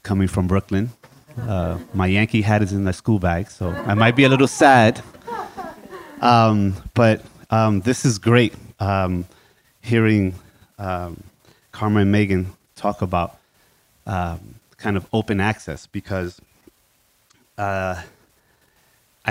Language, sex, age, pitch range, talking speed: English, male, 30-49, 95-115 Hz, 125 wpm